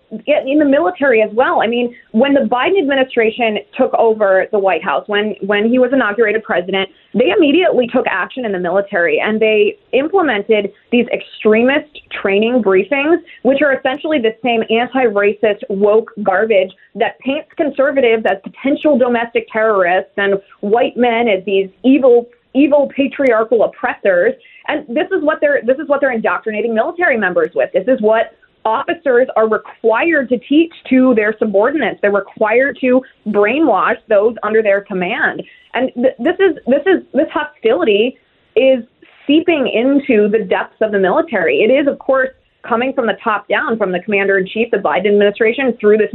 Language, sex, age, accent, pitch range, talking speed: English, female, 20-39, American, 210-270 Hz, 155 wpm